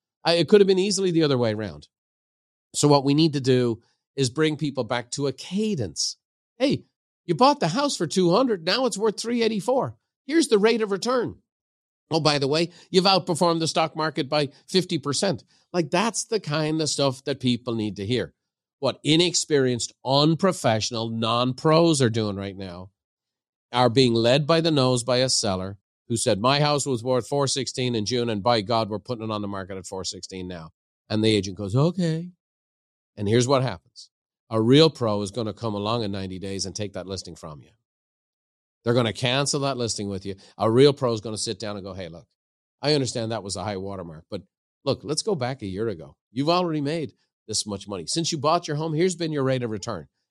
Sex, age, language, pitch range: male, 50-69, English, 105-160 Hz